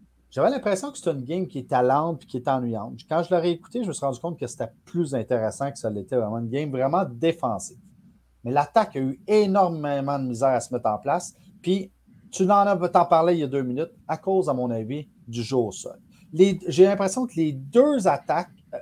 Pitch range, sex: 125-180 Hz, male